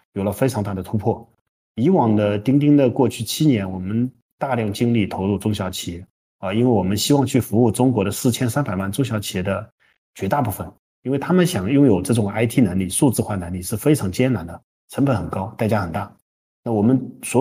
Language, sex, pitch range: Chinese, male, 100-125 Hz